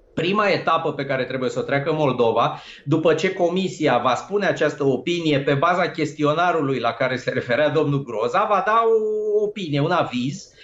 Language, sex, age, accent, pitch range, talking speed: Romanian, male, 30-49, native, 140-200 Hz, 175 wpm